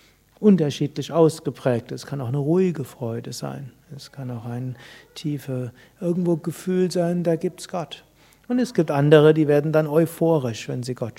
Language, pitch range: German, 140-175 Hz